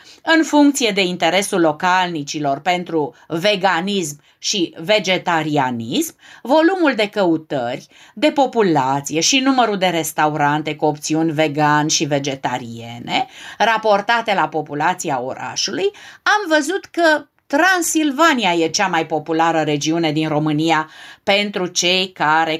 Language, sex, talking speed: Romanian, female, 110 wpm